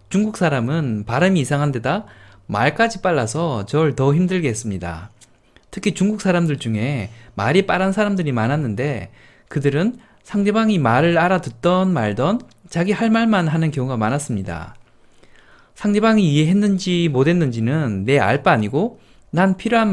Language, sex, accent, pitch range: Korean, male, native, 120-180 Hz